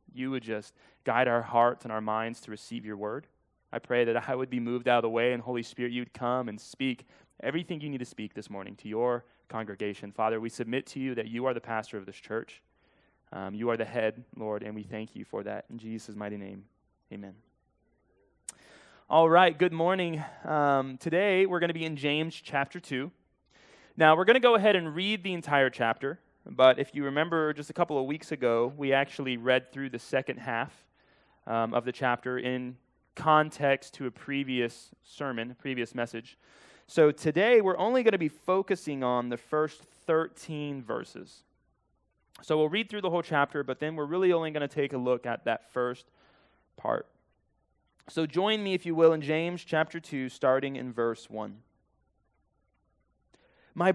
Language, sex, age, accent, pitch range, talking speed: English, male, 20-39, American, 120-155 Hz, 195 wpm